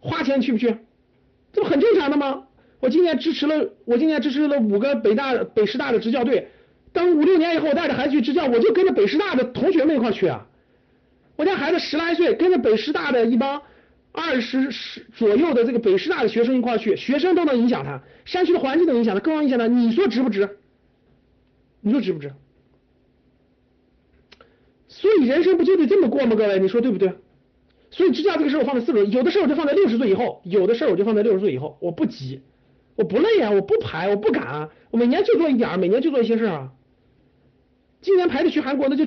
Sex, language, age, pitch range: male, Chinese, 50-69, 205-320 Hz